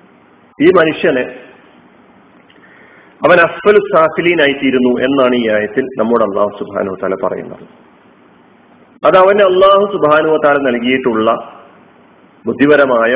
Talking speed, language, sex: 90 wpm, Malayalam, male